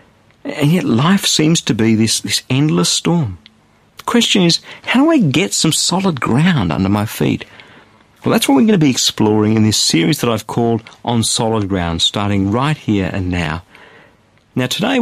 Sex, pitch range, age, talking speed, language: male, 105-170 Hz, 50-69, 190 wpm, English